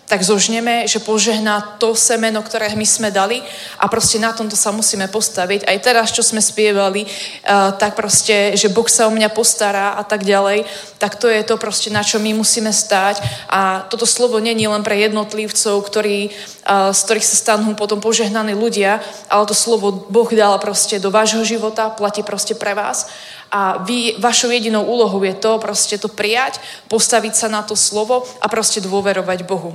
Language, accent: Czech, native